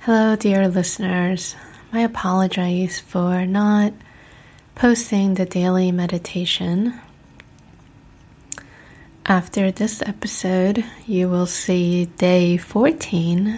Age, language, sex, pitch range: 20-39, English, female, 175-200 Hz